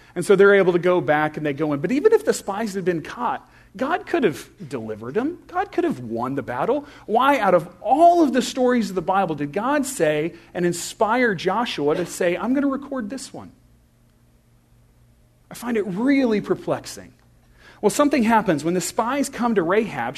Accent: American